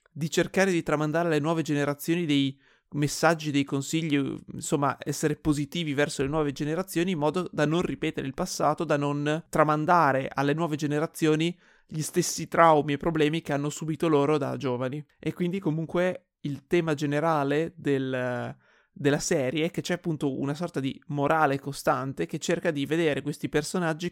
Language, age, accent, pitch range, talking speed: Italian, 30-49, native, 140-165 Hz, 160 wpm